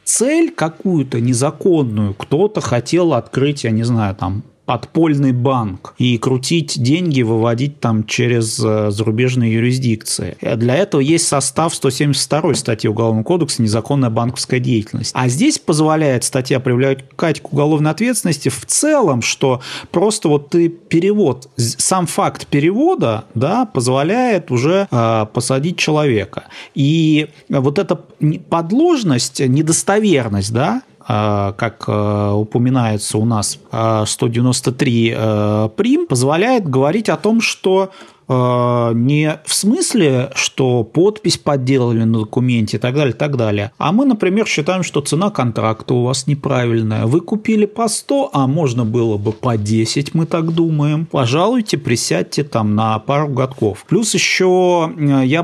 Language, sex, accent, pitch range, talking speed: Russian, male, native, 120-165 Hz, 125 wpm